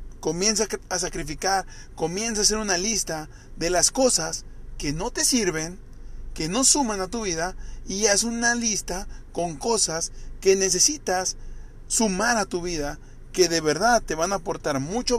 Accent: Mexican